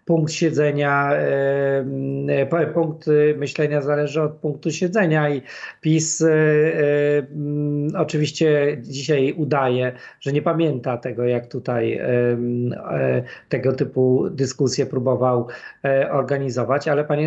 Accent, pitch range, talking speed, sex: native, 135-155 Hz, 90 wpm, male